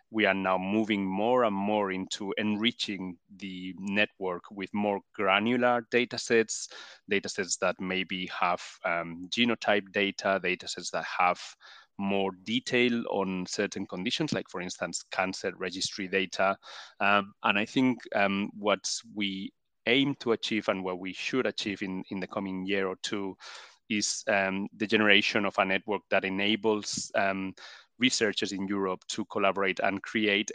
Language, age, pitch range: English, 30-49, 95-110 Hz